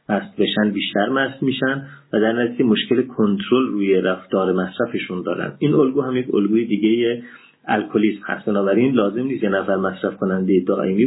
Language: Persian